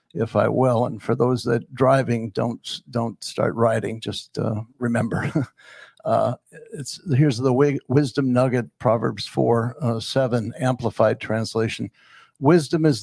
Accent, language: American, English